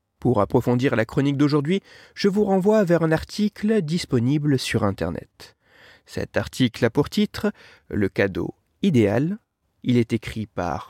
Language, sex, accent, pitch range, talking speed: French, male, French, 115-175 Hz, 145 wpm